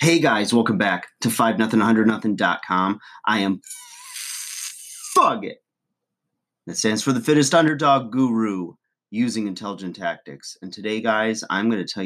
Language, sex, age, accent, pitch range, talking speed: English, male, 30-49, American, 90-115 Hz, 135 wpm